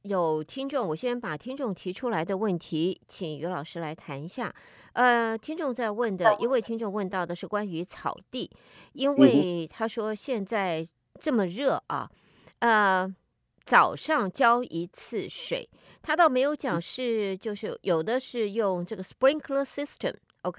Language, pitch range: Chinese, 180-245 Hz